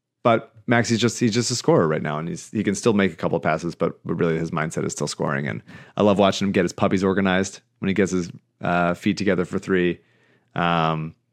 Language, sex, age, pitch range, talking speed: English, male, 30-49, 95-120 Hz, 245 wpm